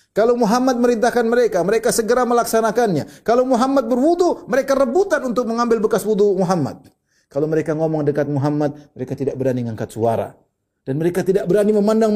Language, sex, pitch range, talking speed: Indonesian, male, 130-210 Hz, 160 wpm